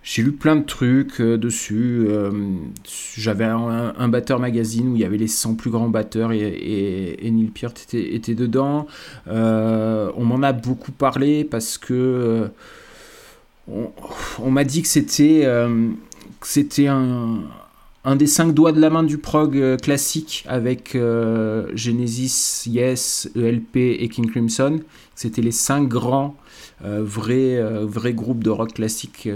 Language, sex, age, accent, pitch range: Japanese, male, 20-39, French, 110-130 Hz